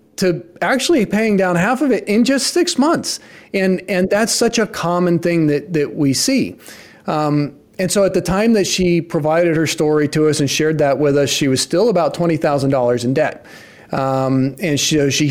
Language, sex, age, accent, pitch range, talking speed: English, male, 40-59, American, 150-200 Hz, 200 wpm